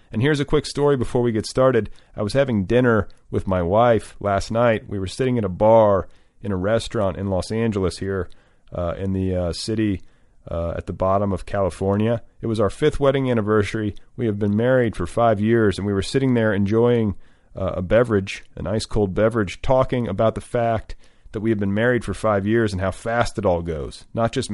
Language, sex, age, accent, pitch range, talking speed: English, male, 40-59, American, 100-120 Hz, 215 wpm